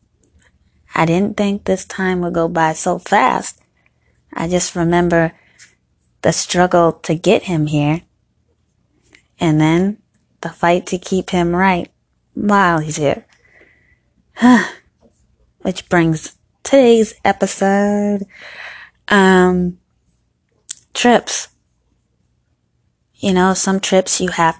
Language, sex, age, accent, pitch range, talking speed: English, female, 20-39, American, 155-195 Hz, 100 wpm